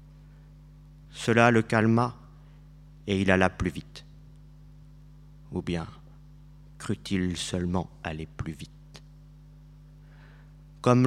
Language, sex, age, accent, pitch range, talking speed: French, male, 40-59, French, 105-150 Hz, 85 wpm